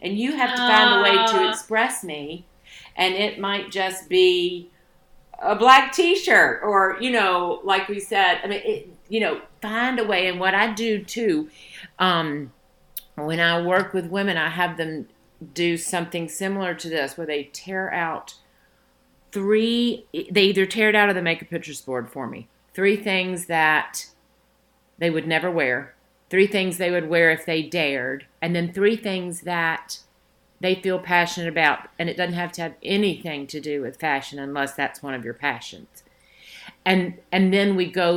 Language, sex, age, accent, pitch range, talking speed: English, female, 50-69, American, 160-195 Hz, 180 wpm